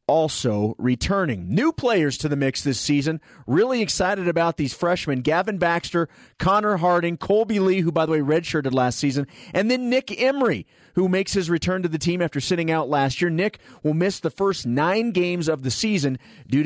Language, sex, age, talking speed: English, male, 40-59, 195 wpm